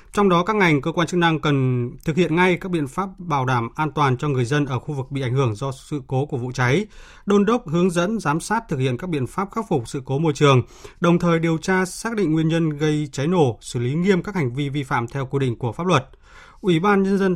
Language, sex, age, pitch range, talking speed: Vietnamese, male, 20-39, 135-175 Hz, 275 wpm